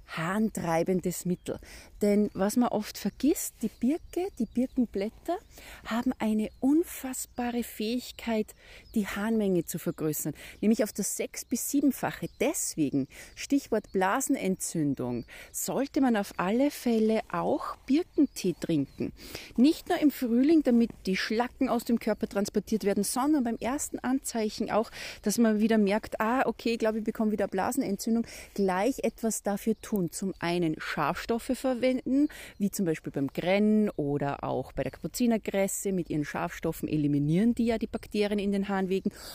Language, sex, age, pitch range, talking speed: German, female, 30-49, 190-245 Hz, 145 wpm